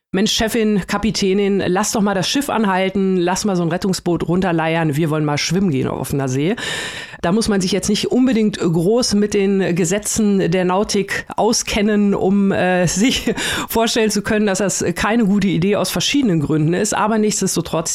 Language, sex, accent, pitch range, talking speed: German, female, German, 170-205 Hz, 180 wpm